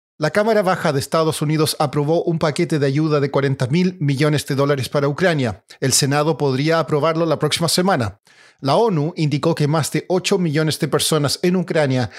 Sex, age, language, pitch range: male, 40-59, Spanish, 145-175 Hz